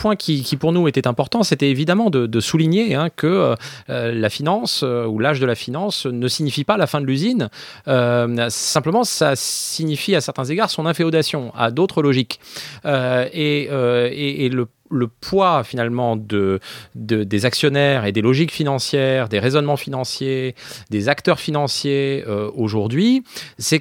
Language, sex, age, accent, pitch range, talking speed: English, male, 30-49, French, 125-170 Hz, 175 wpm